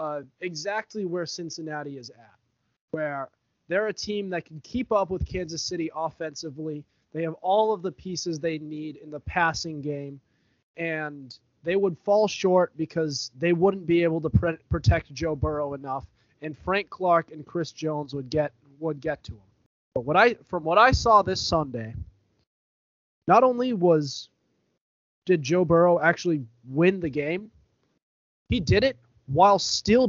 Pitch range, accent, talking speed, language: 145-185 Hz, American, 165 wpm, English